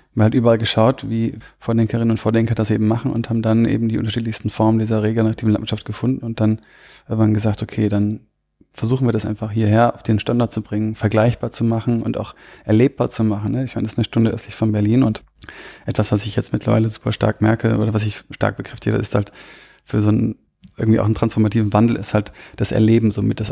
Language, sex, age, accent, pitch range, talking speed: German, male, 30-49, German, 105-115 Hz, 225 wpm